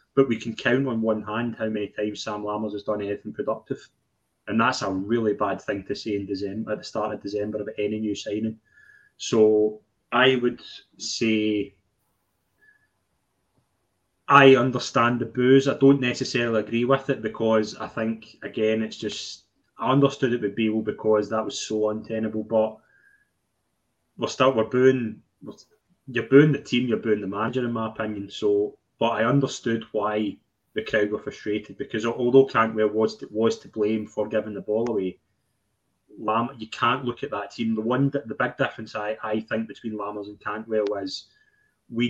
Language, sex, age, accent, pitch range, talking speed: English, male, 20-39, British, 105-125 Hz, 175 wpm